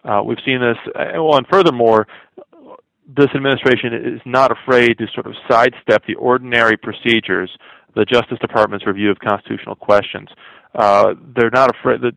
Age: 40-59